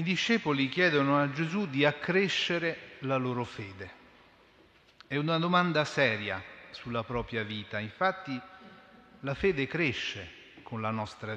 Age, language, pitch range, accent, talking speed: 40-59, Italian, 115-155 Hz, native, 125 wpm